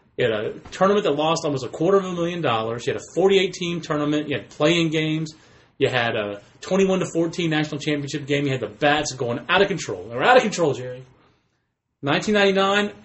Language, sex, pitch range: English, male, 130-170 Hz